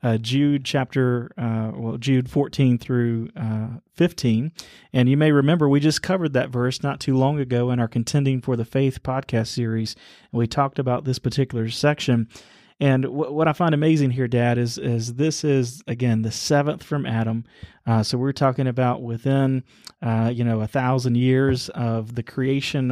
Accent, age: American, 30-49